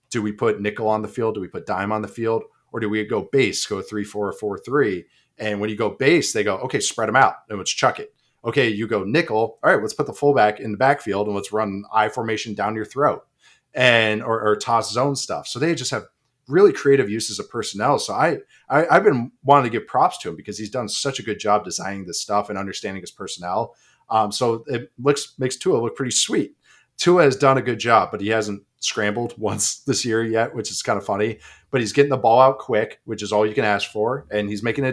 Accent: American